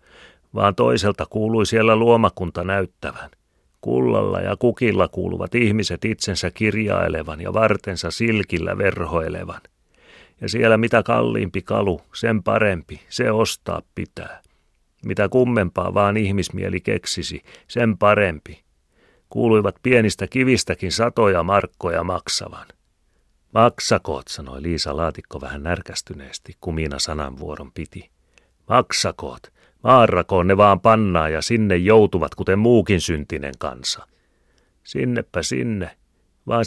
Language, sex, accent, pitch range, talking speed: Finnish, male, native, 80-110 Hz, 105 wpm